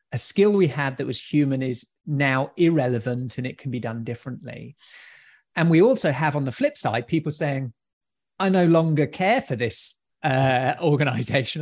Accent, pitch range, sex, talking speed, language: British, 130-165 Hz, male, 175 wpm, English